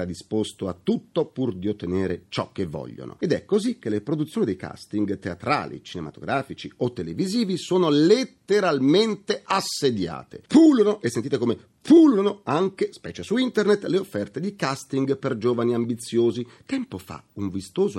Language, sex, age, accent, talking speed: Italian, male, 40-59, native, 150 wpm